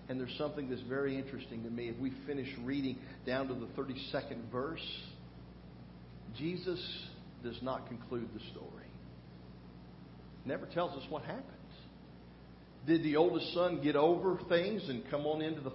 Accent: American